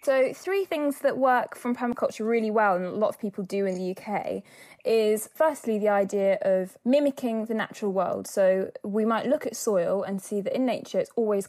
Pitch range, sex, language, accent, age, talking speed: 195-240 Hz, female, English, British, 10-29, 210 wpm